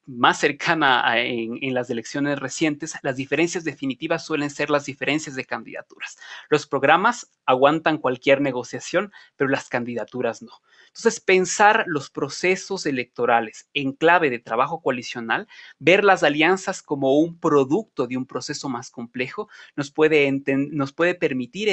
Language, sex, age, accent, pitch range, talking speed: Spanish, male, 30-49, Mexican, 130-175 Hz, 145 wpm